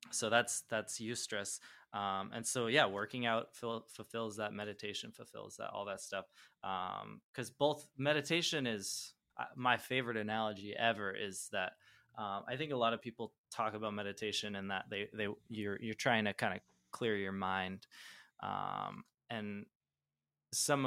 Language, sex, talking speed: English, male, 165 wpm